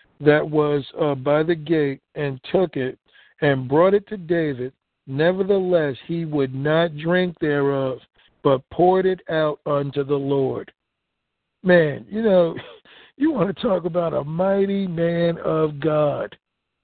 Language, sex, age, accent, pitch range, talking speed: English, male, 60-79, American, 160-220 Hz, 145 wpm